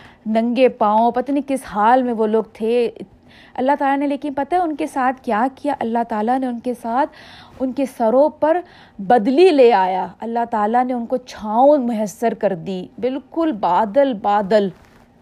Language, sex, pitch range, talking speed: Urdu, female, 210-270 Hz, 180 wpm